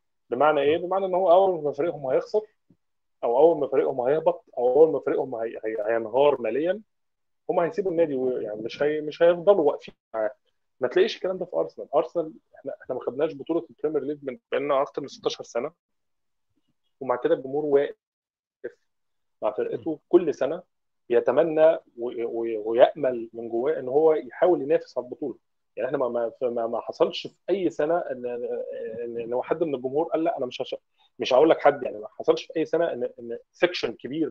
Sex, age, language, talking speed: male, 20-39, Arabic, 185 wpm